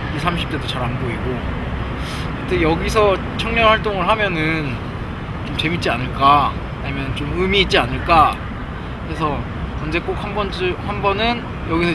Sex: male